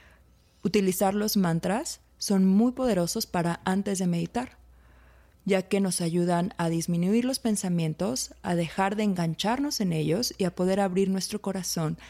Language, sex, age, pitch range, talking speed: Spanish, female, 30-49, 165-200 Hz, 150 wpm